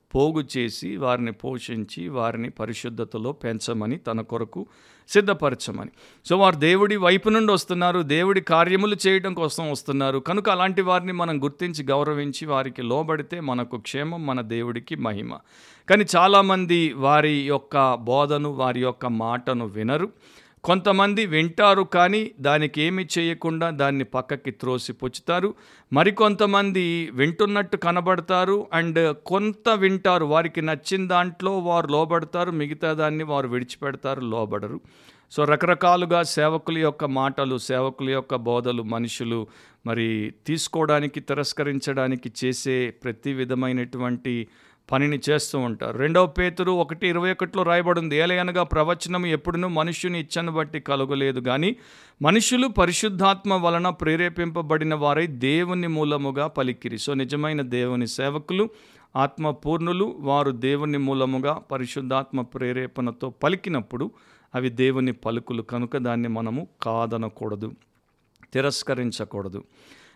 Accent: native